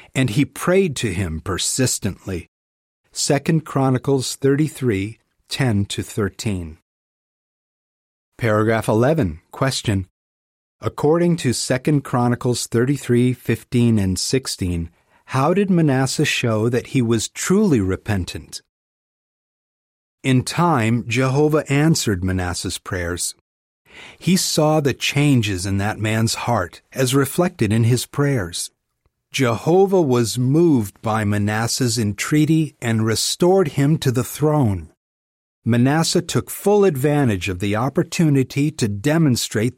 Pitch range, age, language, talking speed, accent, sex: 100-145 Hz, 40-59, English, 110 wpm, American, male